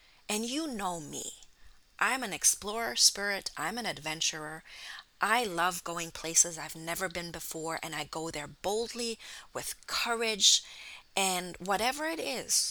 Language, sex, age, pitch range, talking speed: English, female, 30-49, 165-220 Hz, 140 wpm